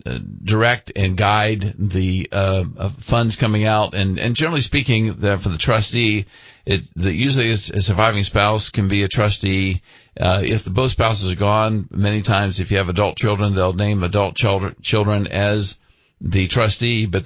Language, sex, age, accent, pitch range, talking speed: English, male, 50-69, American, 95-115 Hz, 175 wpm